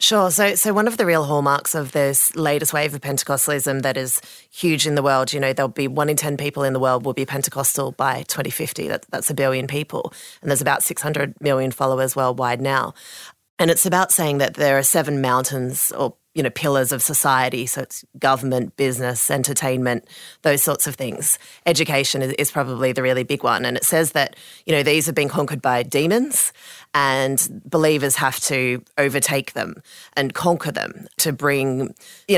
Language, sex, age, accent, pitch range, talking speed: English, female, 30-49, Australian, 135-155 Hz, 195 wpm